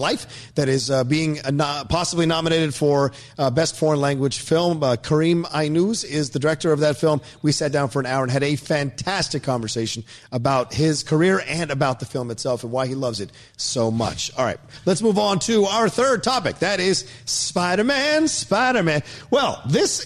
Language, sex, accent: English, male, American